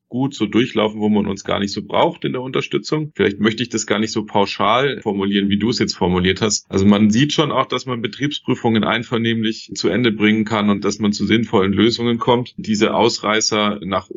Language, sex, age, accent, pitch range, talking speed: German, male, 30-49, German, 100-115 Hz, 215 wpm